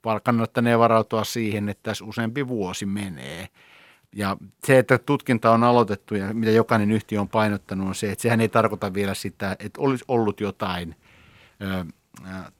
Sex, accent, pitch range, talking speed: male, native, 95-115 Hz, 160 wpm